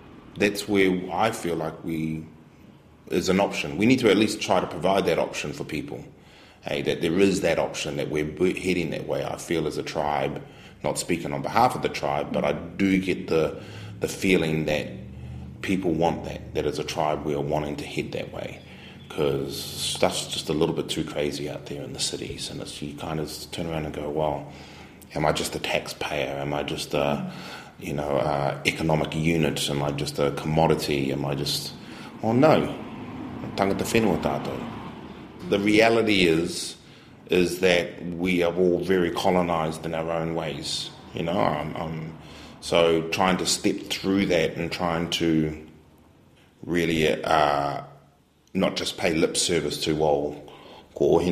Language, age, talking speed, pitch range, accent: English, 30-49, 180 wpm, 75-85 Hz, Australian